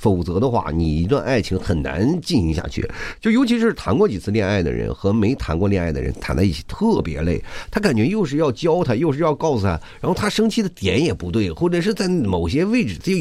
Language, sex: Chinese, male